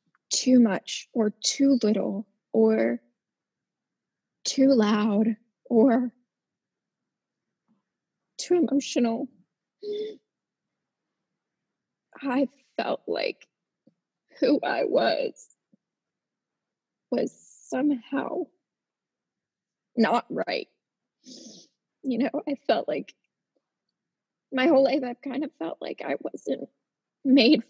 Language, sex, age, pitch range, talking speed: English, female, 20-39, 220-275 Hz, 80 wpm